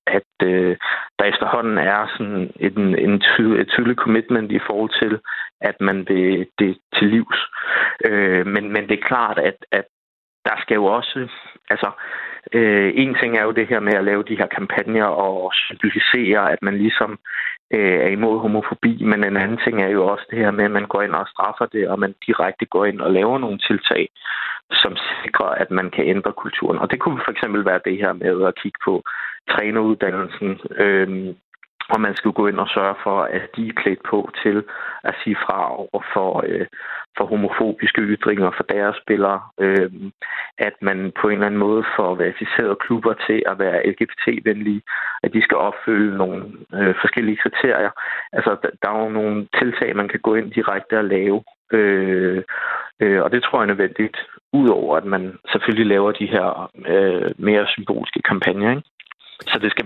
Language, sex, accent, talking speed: Danish, male, native, 180 wpm